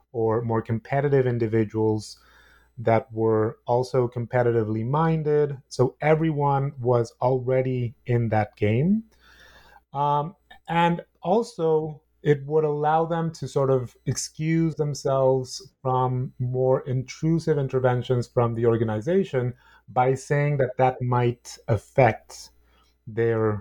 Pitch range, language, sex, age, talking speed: 115-150 Hz, English, male, 30-49, 105 wpm